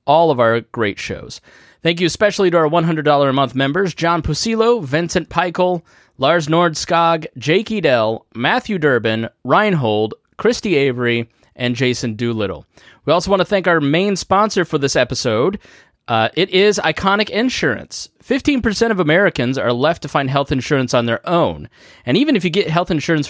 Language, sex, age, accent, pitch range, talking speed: English, male, 20-39, American, 125-180 Hz, 165 wpm